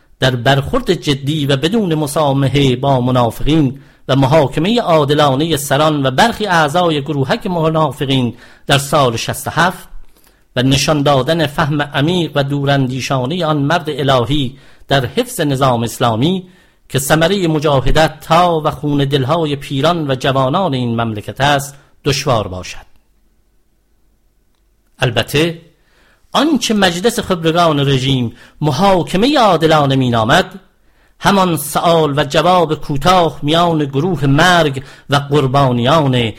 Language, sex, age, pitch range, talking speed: English, male, 50-69, 135-170 Hz, 110 wpm